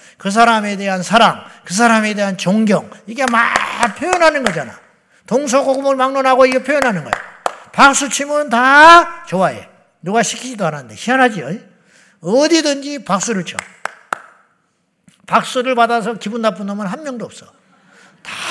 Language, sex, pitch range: Korean, male, 180-255 Hz